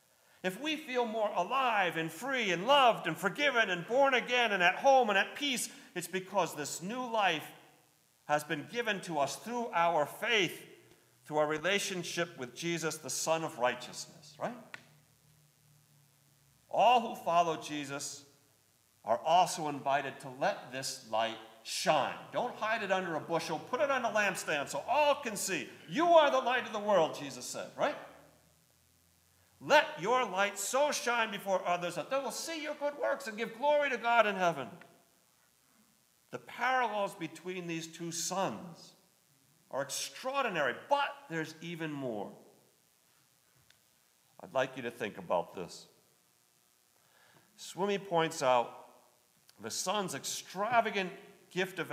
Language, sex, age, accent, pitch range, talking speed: English, male, 50-69, American, 145-225 Hz, 150 wpm